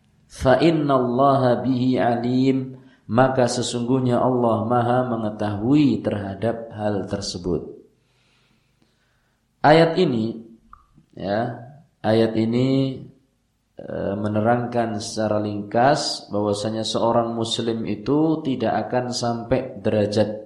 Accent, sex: native, male